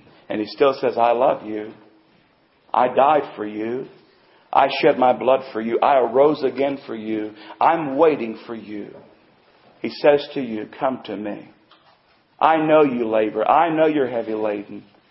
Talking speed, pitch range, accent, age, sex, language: 165 wpm, 110-140 Hz, American, 50-69, male, English